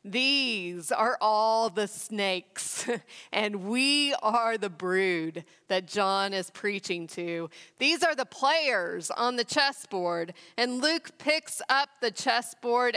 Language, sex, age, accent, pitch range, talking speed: English, female, 40-59, American, 195-265 Hz, 130 wpm